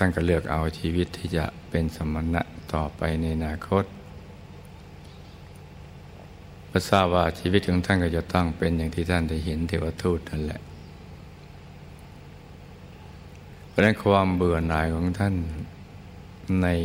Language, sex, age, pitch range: Thai, male, 60-79, 80-90 Hz